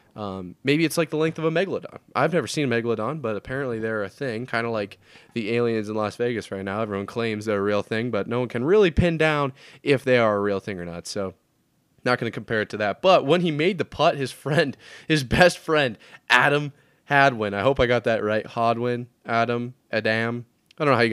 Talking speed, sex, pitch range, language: 240 wpm, male, 110-150 Hz, English